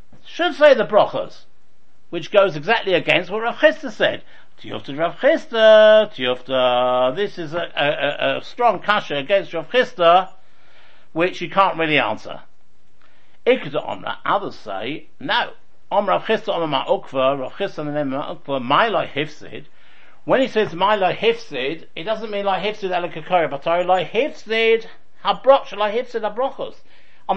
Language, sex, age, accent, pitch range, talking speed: English, male, 60-79, British, 155-215 Hz, 155 wpm